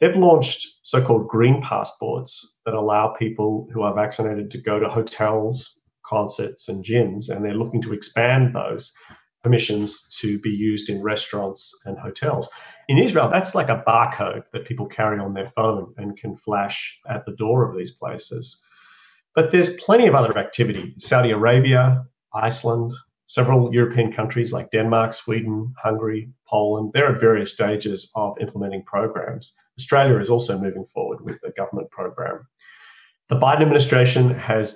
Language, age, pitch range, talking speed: English, 40-59, 110-125 Hz, 155 wpm